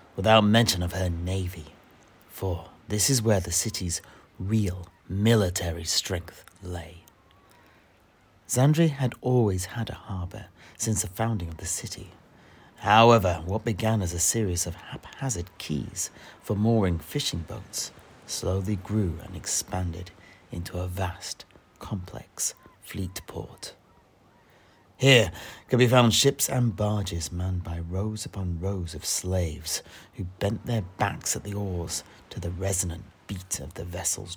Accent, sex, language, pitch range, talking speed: British, male, English, 90-110 Hz, 135 wpm